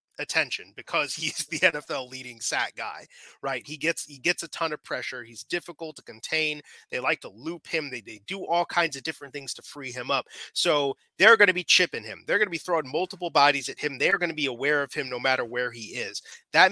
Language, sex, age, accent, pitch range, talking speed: English, male, 30-49, American, 135-175 Hz, 240 wpm